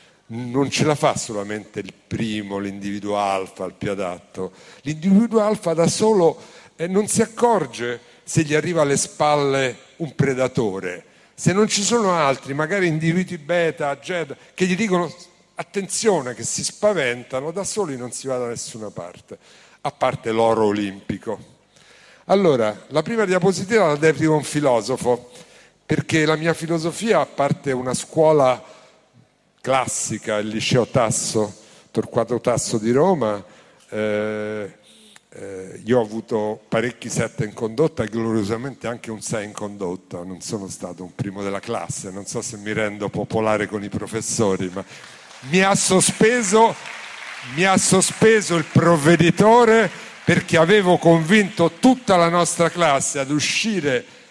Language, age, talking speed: Italian, 50-69, 145 wpm